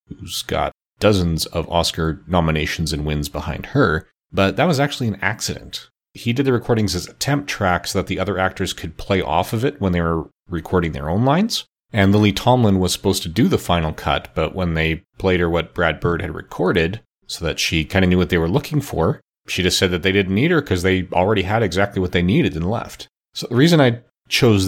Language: English